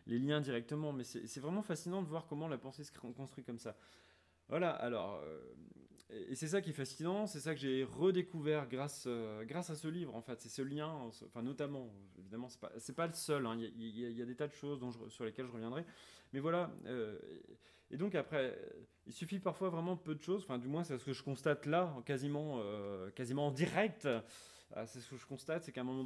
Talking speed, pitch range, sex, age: 235 wpm, 120-155 Hz, male, 30-49